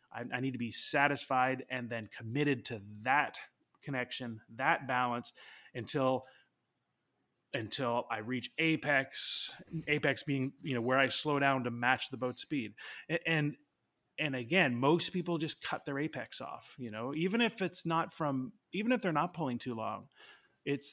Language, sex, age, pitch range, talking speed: English, male, 20-39, 120-150 Hz, 165 wpm